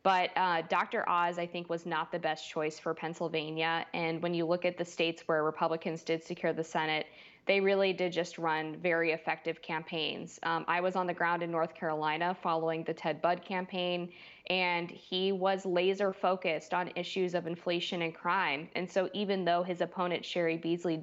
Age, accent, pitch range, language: 20-39, American, 165-185 Hz, English